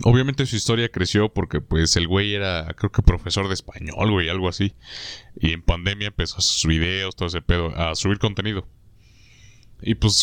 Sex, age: male, 30-49